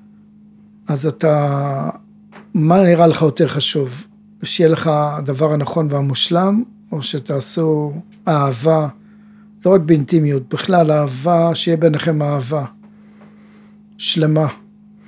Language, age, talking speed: Hebrew, 50-69, 95 wpm